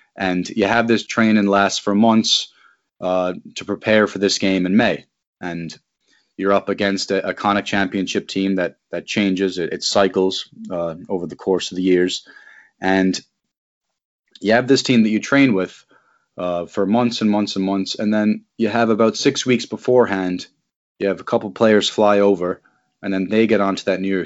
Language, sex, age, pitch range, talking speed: English, male, 20-39, 95-110 Hz, 195 wpm